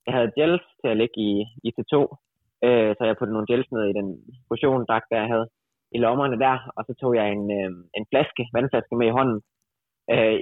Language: Danish